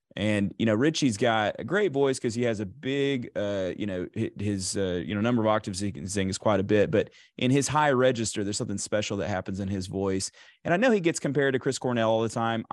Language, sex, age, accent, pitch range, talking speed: English, male, 30-49, American, 105-125 Hz, 260 wpm